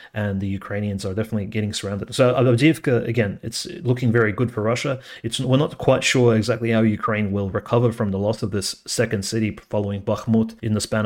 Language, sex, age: English, male, 30-49